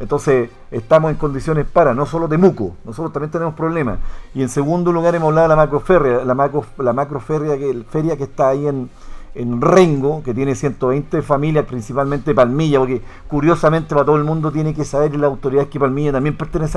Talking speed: 200 wpm